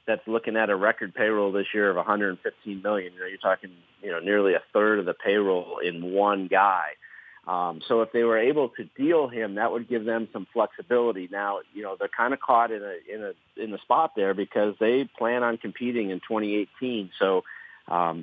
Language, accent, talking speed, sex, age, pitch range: English, American, 215 wpm, male, 40-59, 90-110 Hz